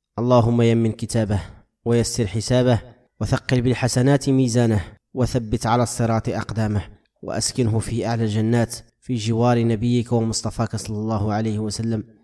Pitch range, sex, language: 110-120 Hz, male, Arabic